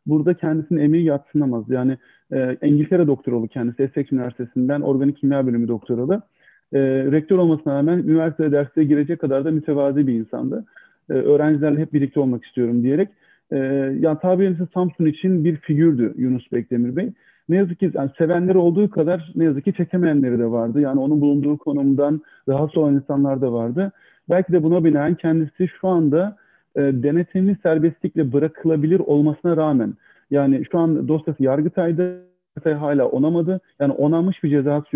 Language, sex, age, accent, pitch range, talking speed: Turkish, male, 40-59, native, 135-170 Hz, 155 wpm